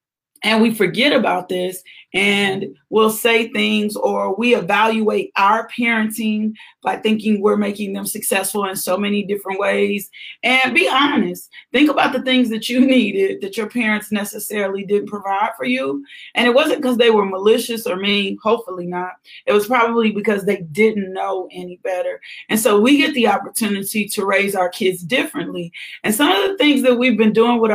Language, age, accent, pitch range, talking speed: English, 30-49, American, 200-240 Hz, 180 wpm